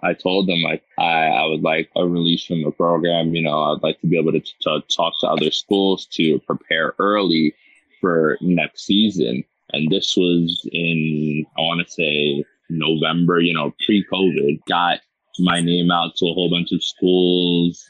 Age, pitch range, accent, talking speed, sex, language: 20-39, 85-95 Hz, American, 185 wpm, male, English